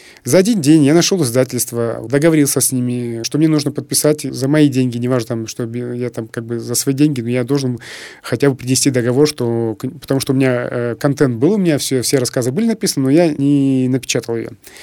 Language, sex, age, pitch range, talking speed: Russian, male, 20-39, 125-155 Hz, 215 wpm